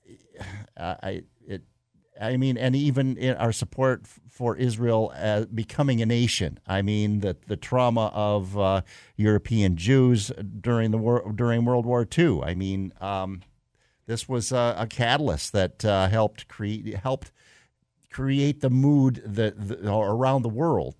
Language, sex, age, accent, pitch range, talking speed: English, male, 50-69, American, 95-125 Hz, 150 wpm